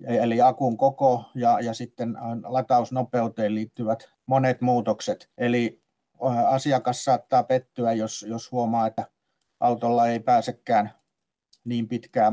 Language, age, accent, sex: Finnish, 50-69, native, male